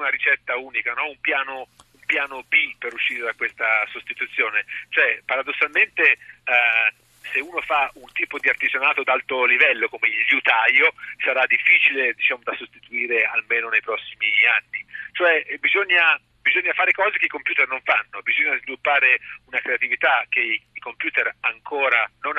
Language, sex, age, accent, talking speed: Italian, male, 40-59, native, 155 wpm